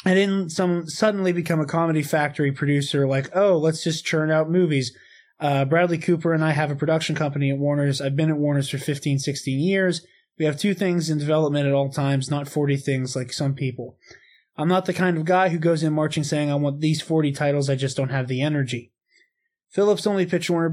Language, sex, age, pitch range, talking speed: English, male, 20-39, 140-170 Hz, 215 wpm